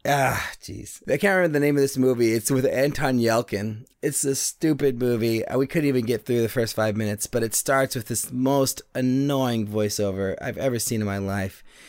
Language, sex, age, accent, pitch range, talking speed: English, male, 20-39, American, 115-140 Hz, 205 wpm